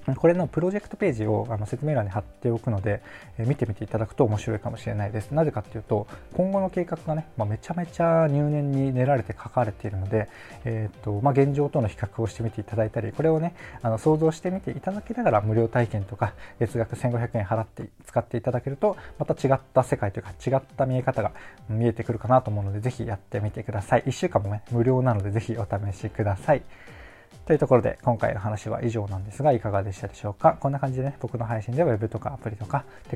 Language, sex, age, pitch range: Japanese, male, 20-39, 105-135 Hz